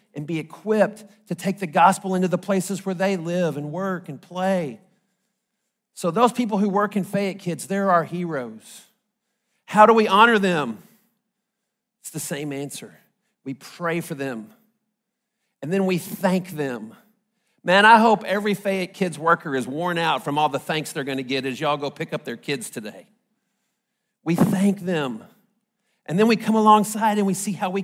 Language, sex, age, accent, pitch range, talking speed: English, male, 40-59, American, 180-225 Hz, 180 wpm